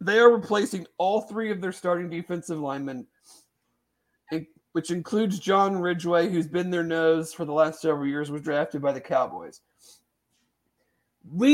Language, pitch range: English, 155-195 Hz